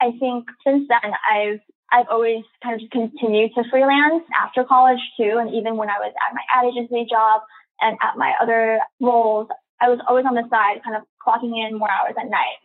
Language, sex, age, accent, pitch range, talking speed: English, female, 20-39, American, 225-255 Hz, 215 wpm